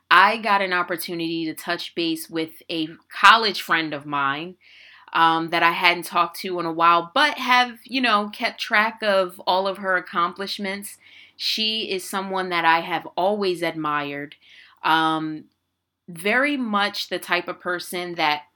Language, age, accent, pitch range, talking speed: English, 20-39, American, 165-200 Hz, 160 wpm